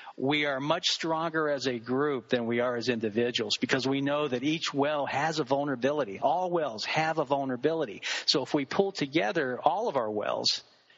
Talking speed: 190 wpm